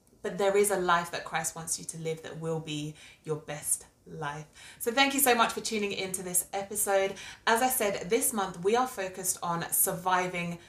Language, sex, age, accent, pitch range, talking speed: English, female, 30-49, British, 165-210 Hz, 210 wpm